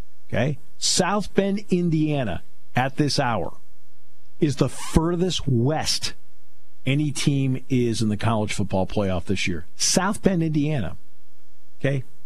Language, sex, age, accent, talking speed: English, male, 50-69, American, 120 wpm